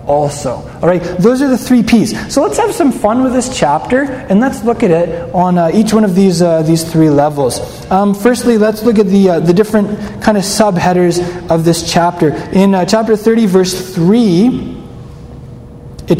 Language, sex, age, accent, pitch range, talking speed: English, male, 20-39, American, 155-205 Hz, 195 wpm